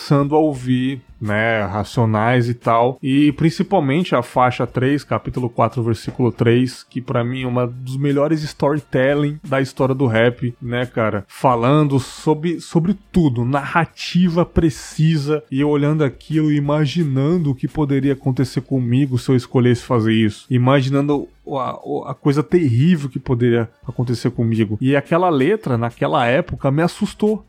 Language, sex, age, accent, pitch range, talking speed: Portuguese, male, 20-39, Brazilian, 120-150 Hz, 145 wpm